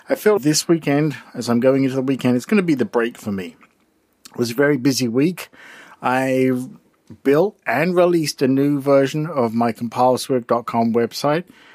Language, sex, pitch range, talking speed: English, male, 115-150 Hz, 180 wpm